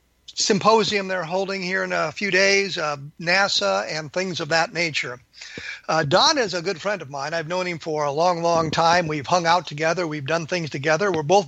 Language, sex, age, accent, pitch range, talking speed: English, male, 50-69, American, 155-195 Hz, 215 wpm